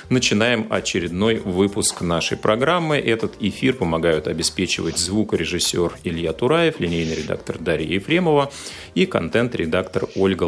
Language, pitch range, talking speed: Russian, 90-125 Hz, 110 wpm